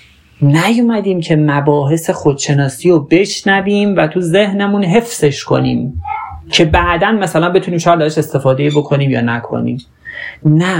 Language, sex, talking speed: Persian, male, 120 wpm